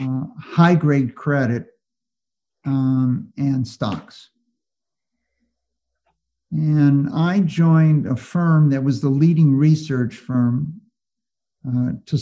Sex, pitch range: male, 125-155 Hz